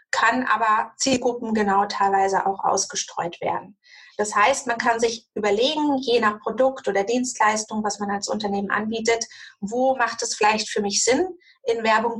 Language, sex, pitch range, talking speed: German, female, 205-250 Hz, 160 wpm